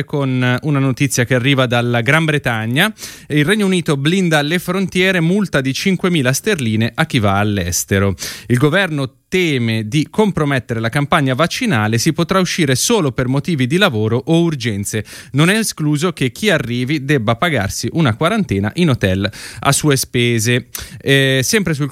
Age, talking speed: 30-49, 160 wpm